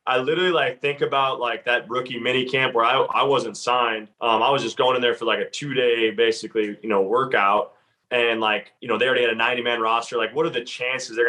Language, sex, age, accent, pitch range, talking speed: English, male, 20-39, American, 115-135 Hz, 245 wpm